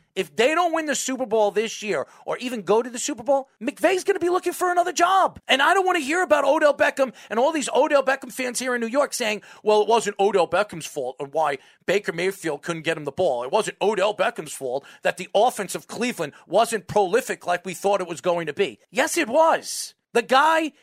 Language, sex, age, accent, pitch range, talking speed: English, male, 40-59, American, 205-295 Hz, 240 wpm